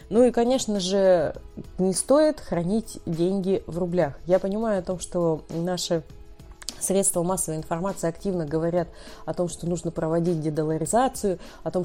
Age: 30-49